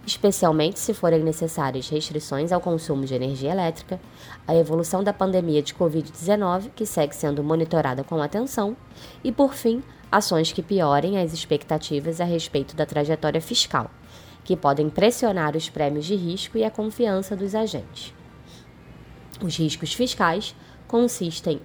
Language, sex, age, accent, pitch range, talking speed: Portuguese, female, 20-39, Brazilian, 155-205 Hz, 140 wpm